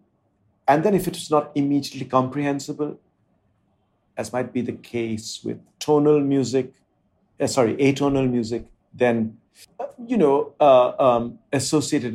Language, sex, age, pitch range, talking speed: English, male, 50-69, 115-150 Hz, 125 wpm